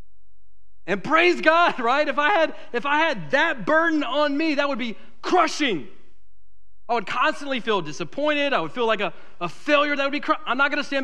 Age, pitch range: 40-59, 150-245 Hz